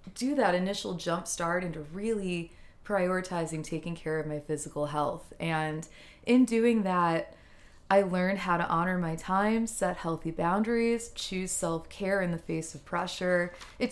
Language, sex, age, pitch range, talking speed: English, female, 20-39, 165-200 Hz, 160 wpm